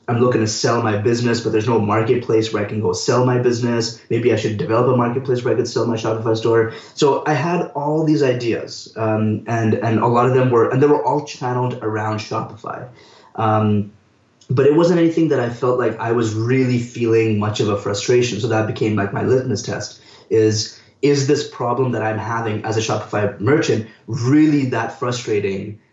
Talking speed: 205 wpm